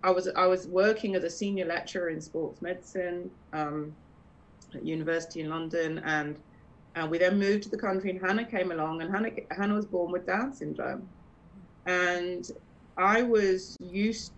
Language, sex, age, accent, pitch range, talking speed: English, female, 30-49, British, 165-220 Hz, 170 wpm